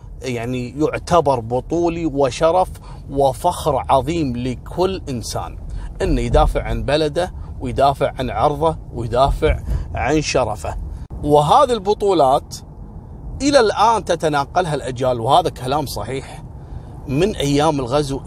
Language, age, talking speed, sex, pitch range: Arabic, 30-49, 100 wpm, male, 120-150 Hz